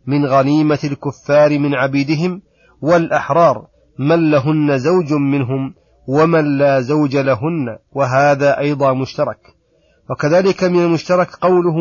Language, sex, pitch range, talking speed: Arabic, male, 140-155 Hz, 105 wpm